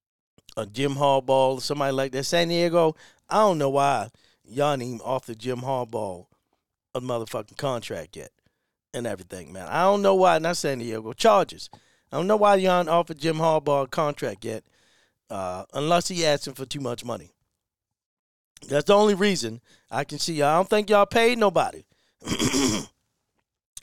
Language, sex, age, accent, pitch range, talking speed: English, male, 40-59, American, 135-195 Hz, 170 wpm